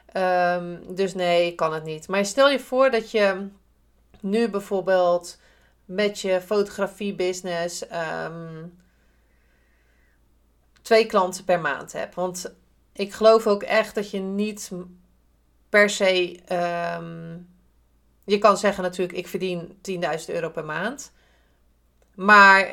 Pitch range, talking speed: 165-200 Hz, 120 wpm